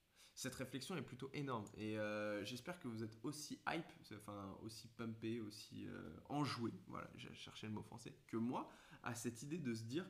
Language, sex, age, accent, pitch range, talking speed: English, male, 20-39, French, 105-115 Hz, 195 wpm